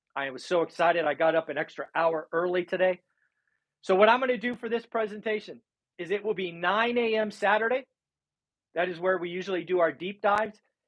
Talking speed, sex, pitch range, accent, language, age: 200 wpm, male, 165-220 Hz, American, English, 40-59